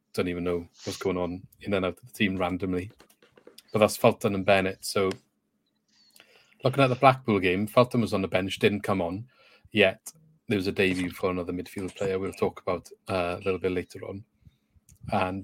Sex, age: male, 30-49